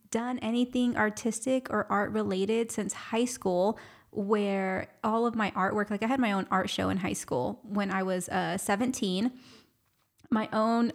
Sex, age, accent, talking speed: female, 20-39, American, 170 wpm